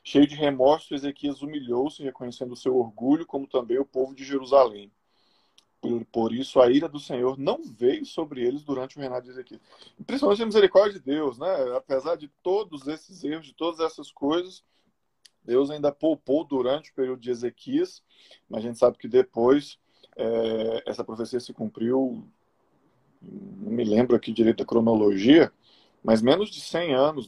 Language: Portuguese